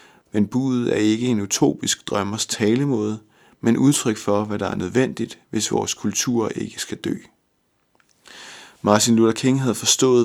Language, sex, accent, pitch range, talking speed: Danish, male, native, 105-125 Hz, 150 wpm